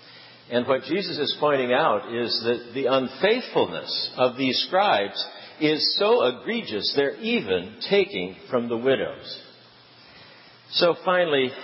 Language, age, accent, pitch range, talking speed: English, 60-79, American, 115-160 Hz, 125 wpm